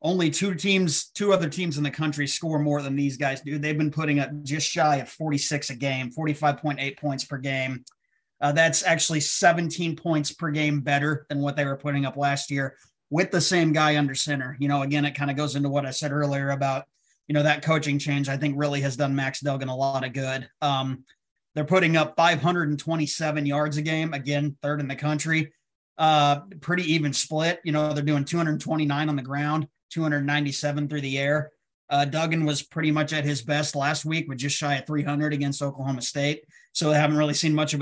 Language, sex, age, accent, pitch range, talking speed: English, male, 30-49, American, 140-155 Hz, 215 wpm